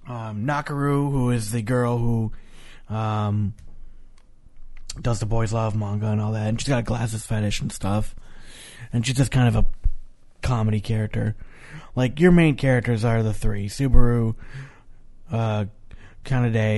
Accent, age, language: American, 30-49, English